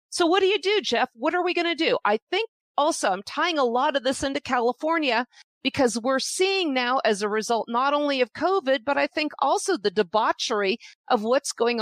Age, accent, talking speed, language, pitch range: 40-59, American, 220 wpm, English, 215-285 Hz